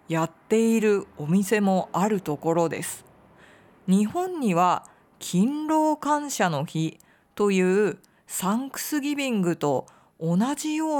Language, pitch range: Japanese, 170-250 Hz